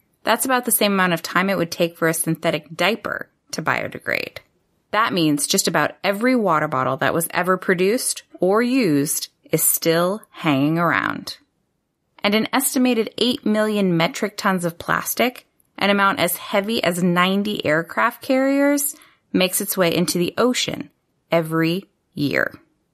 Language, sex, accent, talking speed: English, female, American, 150 wpm